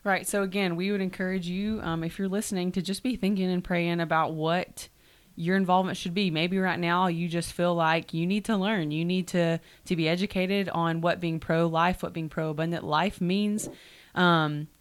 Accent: American